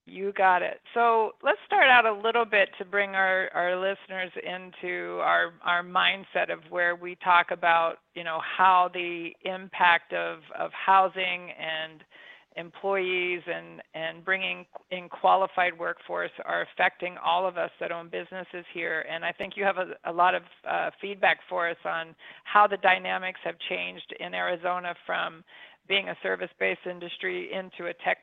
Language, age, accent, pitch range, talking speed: English, 50-69, American, 170-195 Hz, 165 wpm